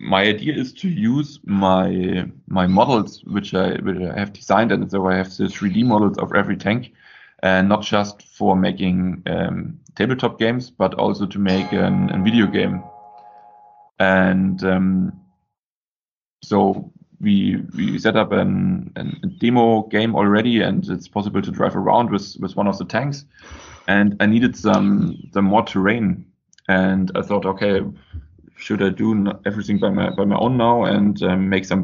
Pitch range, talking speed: 95-120 Hz, 170 wpm